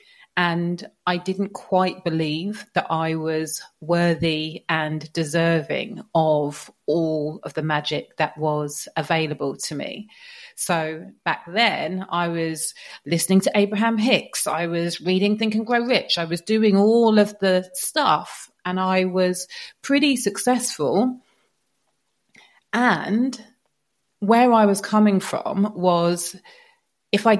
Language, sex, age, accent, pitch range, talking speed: English, female, 30-49, British, 160-205 Hz, 125 wpm